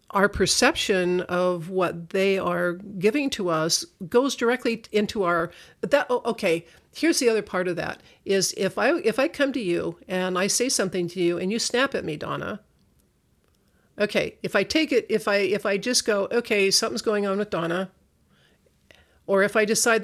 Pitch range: 180-220 Hz